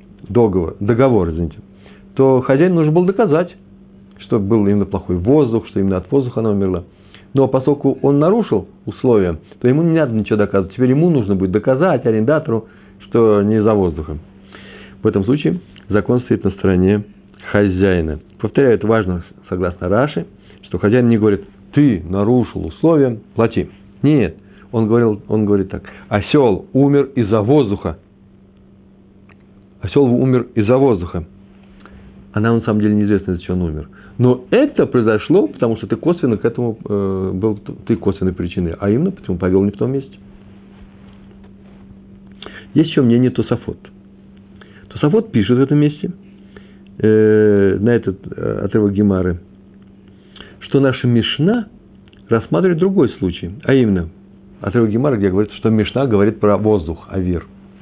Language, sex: Russian, male